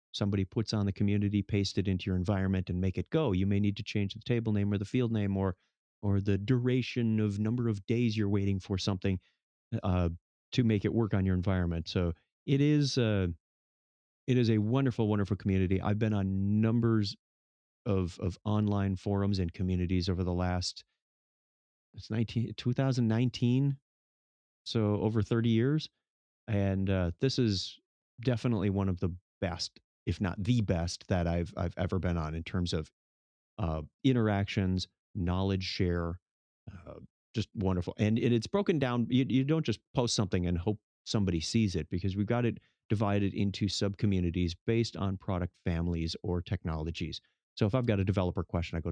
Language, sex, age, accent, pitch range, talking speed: English, male, 30-49, American, 90-110 Hz, 175 wpm